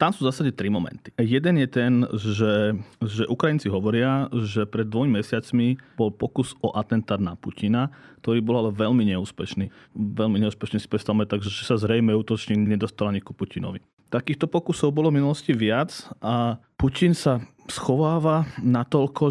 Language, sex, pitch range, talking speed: Slovak, male, 110-130 Hz, 155 wpm